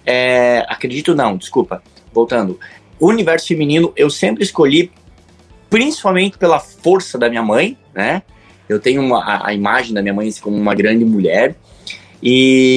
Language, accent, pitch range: Portuguese, Brazilian, 115-165 Hz